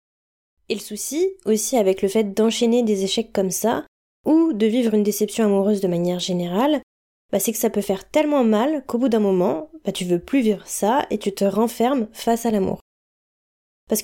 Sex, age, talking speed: female, 20-39, 200 wpm